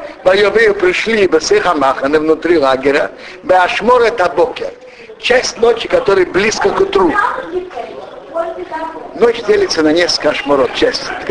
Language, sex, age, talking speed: Russian, male, 60-79, 115 wpm